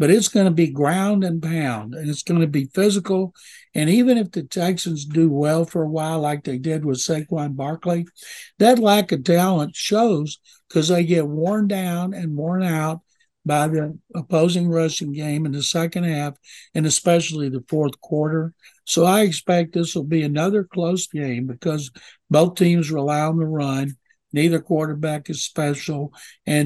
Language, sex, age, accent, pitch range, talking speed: English, male, 60-79, American, 150-180 Hz, 175 wpm